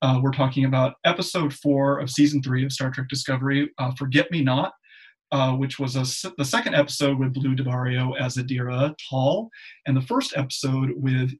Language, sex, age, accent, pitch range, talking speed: English, male, 30-49, American, 130-150 Hz, 185 wpm